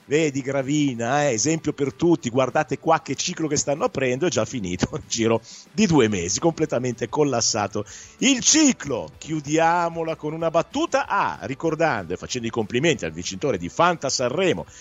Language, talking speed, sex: Italian, 165 wpm, male